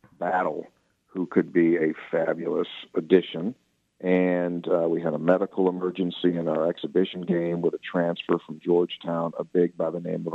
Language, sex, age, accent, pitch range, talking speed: English, male, 50-69, American, 85-90 Hz, 170 wpm